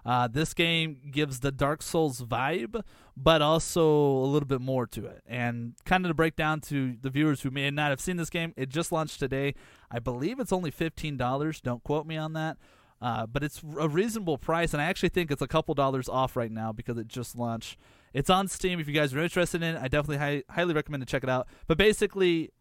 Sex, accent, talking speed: male, American, 230 wpm